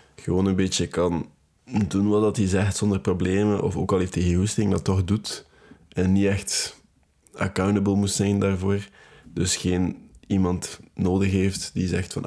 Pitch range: 85-100 Hz